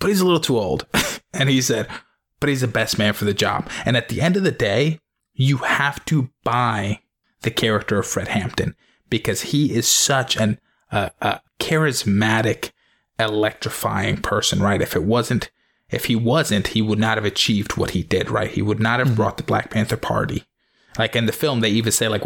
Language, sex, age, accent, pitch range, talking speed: English, male, 20-39, American, 105-125 Hz, 205 wpm